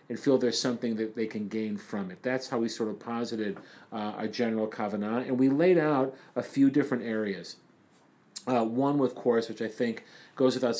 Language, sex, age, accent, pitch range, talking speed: English, male, 40-59, American, 115-140 Hz, 205 wpm